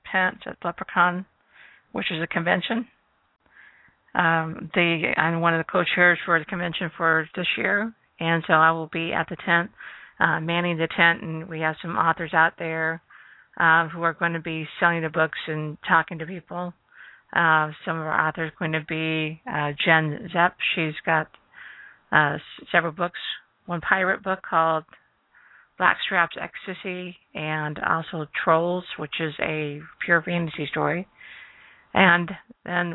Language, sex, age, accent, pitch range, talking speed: English, female, 50-69, American, 160-185 Hz, 155 wpm